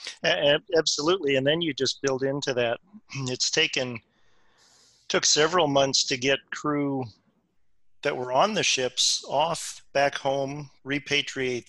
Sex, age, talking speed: male, 40-59, 130 wpm